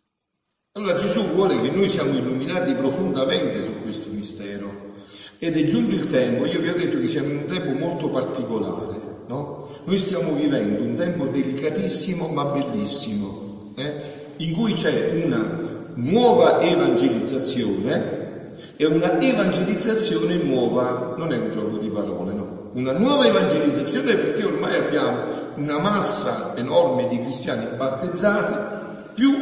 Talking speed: 135 wpm